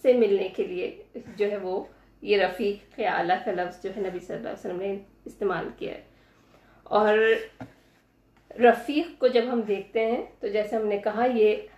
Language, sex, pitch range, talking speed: Urdu, female, 205-250 Hz, 185 wpm